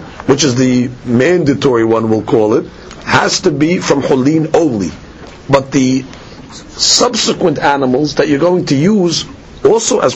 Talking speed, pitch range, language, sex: 150 wpm, 145-205 Hz, English, male